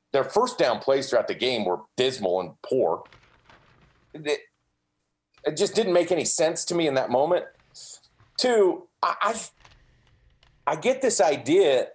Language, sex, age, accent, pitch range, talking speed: English, male, 40-59, American, 130-200 Hz, 145 wpm